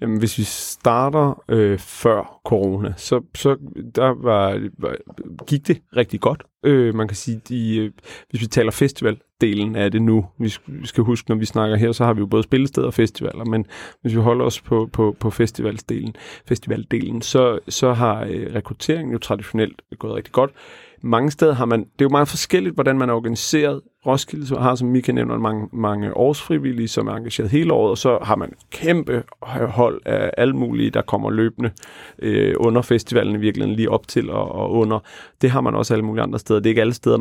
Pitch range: 110-125 Hz